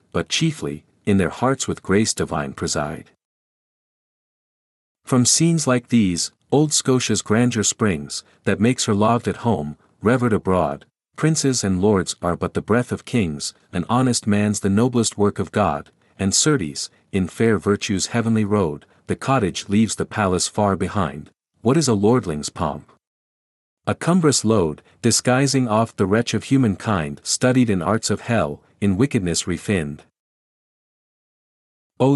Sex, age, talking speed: male, 50-69, 145 wpm